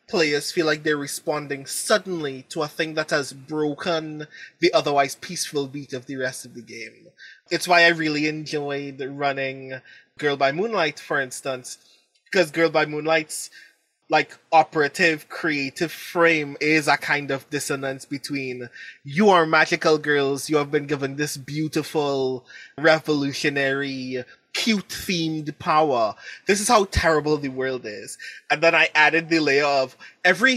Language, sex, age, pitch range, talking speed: English, male, 20-39, 145-175 Hz, 145 wpm